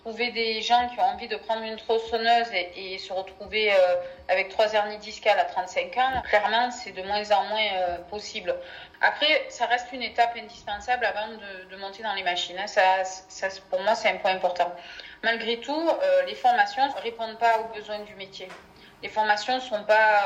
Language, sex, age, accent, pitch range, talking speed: French, female, 30-49, French, 190-240 Hz, 205 wpm